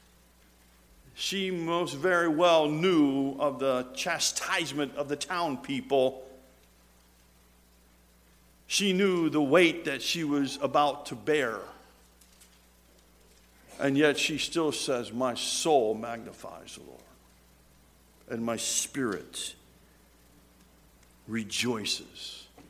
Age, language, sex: 50-69, English, male